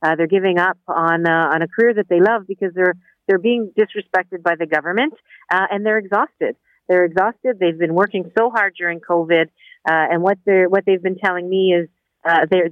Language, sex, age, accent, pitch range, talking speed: English, female, 50-69, American, 165-200 Hz, 210 wpm